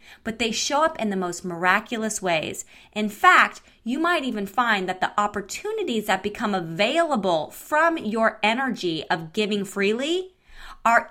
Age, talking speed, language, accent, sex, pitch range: 20-39, 150 wpm, English, American, female, 185-245 Hz